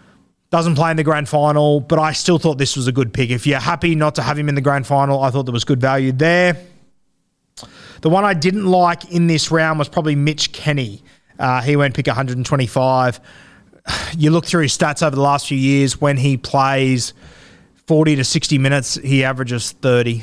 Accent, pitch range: Australian, 135-170 Hz